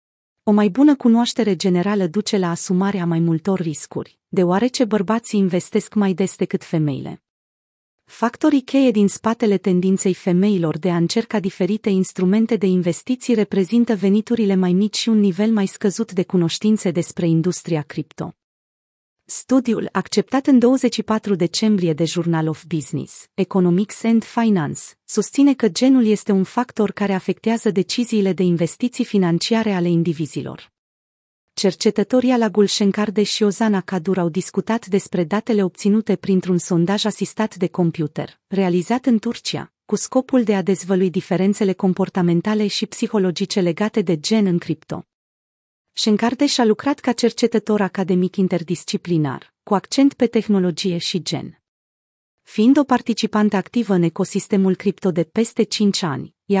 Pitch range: 180-220 Hz